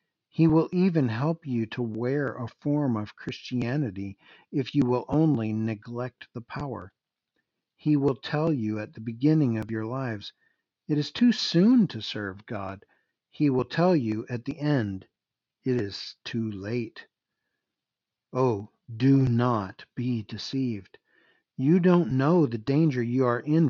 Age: 60-79